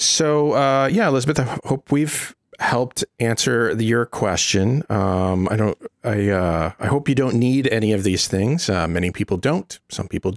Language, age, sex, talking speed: English, 40-59, male, 185 wpm